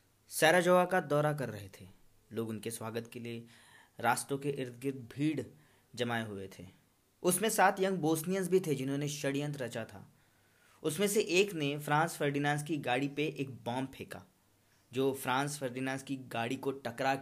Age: 20-39